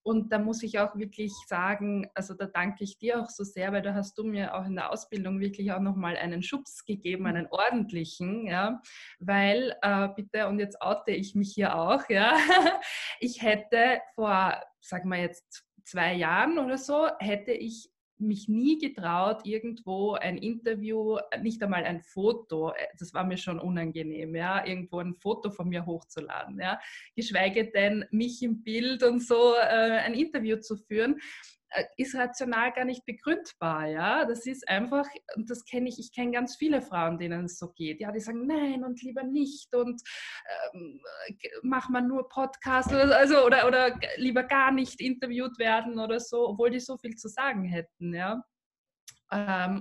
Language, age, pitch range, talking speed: German, 20-39, 195-245 Hz, 175 wpm